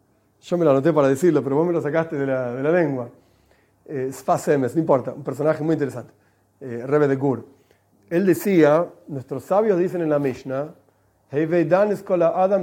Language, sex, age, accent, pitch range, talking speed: Spanish, male, 40-59, Argentinian, 130-205 Hz, 185 wpm